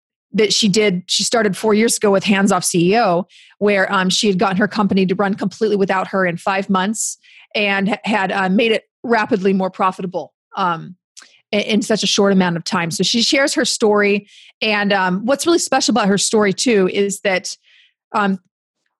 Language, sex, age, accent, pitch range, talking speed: English, female, 30-49, American, 190-225 Hz, 195 wpm